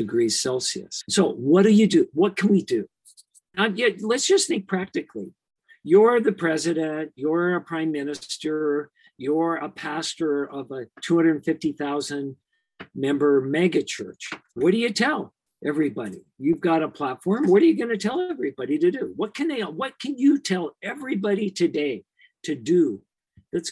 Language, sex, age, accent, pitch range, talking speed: English, male, 50-69, American, 155-235 Hz, 155 wpm